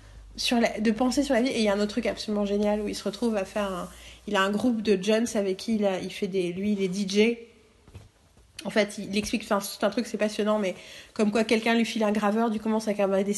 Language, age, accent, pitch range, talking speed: French, 30-49, French, 205-240 Hz, 285 wpm